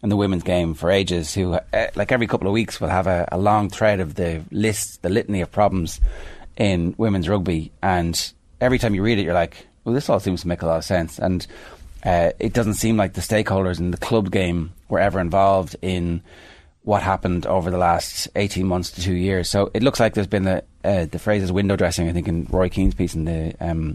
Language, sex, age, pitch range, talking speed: English, male, 30-49, 85-105 Hz, 235 wpm